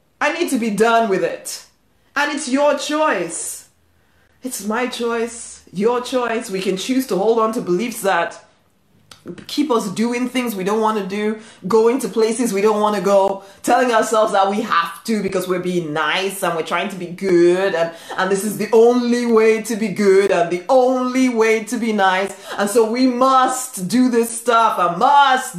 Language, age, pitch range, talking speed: English, 20-39, 190-250 Hz, 195 wpm